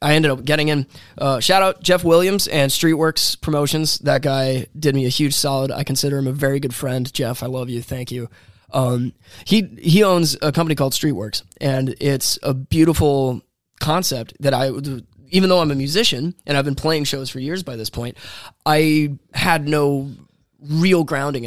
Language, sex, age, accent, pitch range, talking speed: English, male, 20-39, American, 120-150 Hz, 190 wpm